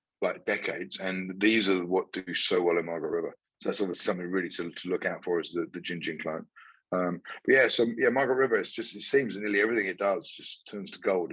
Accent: British